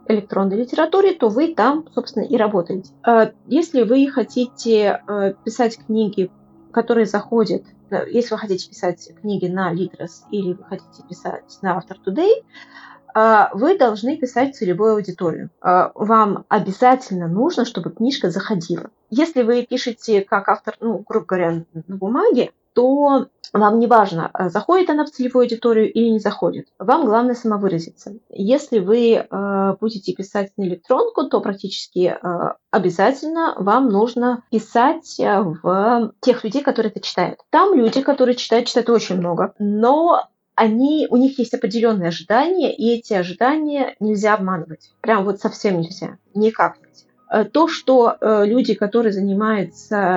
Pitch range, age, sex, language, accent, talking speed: 195-245 Hz, 20-39, female, Russian, native, 135 wpm